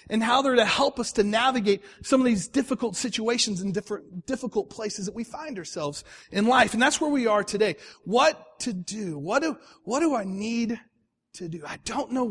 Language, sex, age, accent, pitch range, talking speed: English, male, 40-59, American, 210-270 Hz, 200 wpm